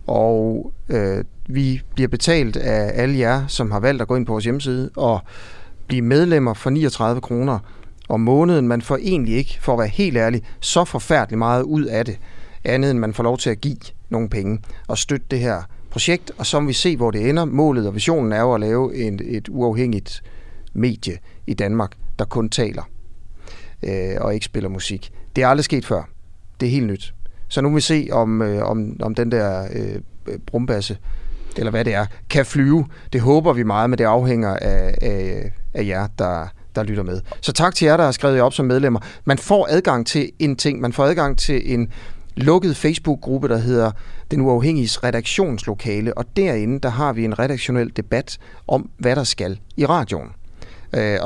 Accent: native